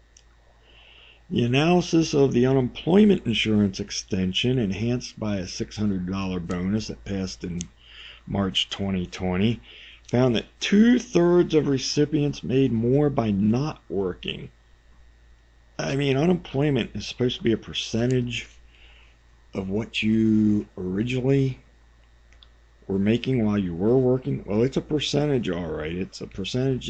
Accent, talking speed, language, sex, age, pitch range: American, 125 wpm, English, male, 50-69, 95-125 Hz